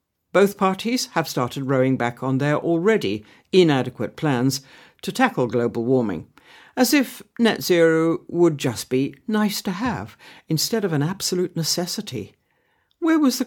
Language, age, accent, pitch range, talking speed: English, 60-79, British, 130-195 Hz, 145 wpm